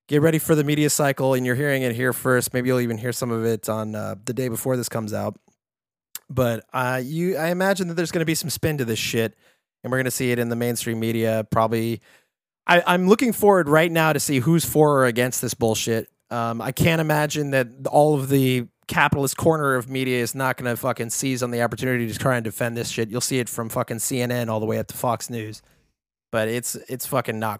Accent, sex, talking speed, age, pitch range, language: American, male, 240 wpm, 30-49, 115-140 Hz, English